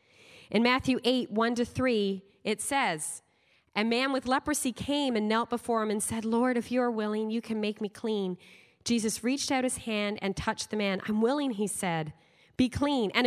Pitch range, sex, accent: 210-250 Hz, female, American